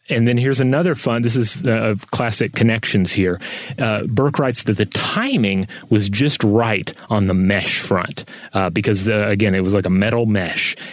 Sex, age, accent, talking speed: male, 30-49, American, 180 wpm